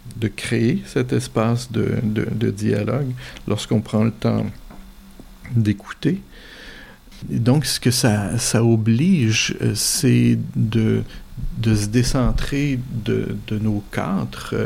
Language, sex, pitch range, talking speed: French, male, 105-120 Hz, 120 wpm